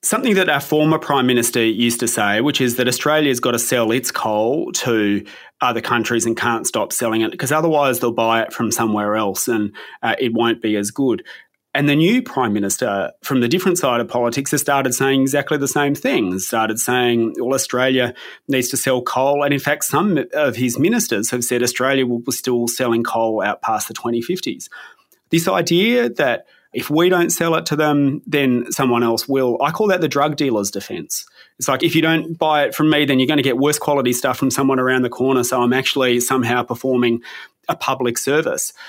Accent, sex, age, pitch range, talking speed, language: Australian, male, 30-49, 120-150 Hz, 215 wpm, English